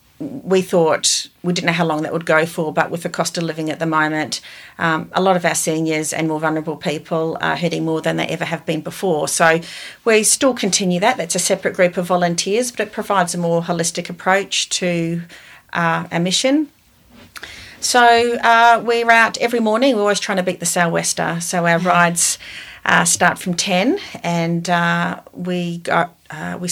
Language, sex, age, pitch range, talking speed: English, female, 40-59, 165-185 Hz, 195 wpm